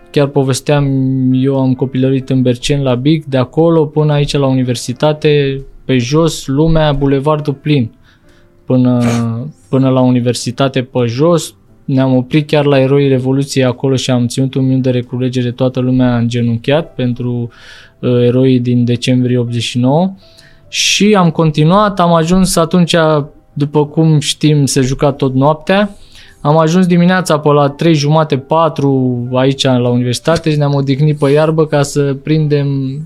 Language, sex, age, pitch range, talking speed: Romanian, male, 20-39, 125-160 Hz, 145 wpm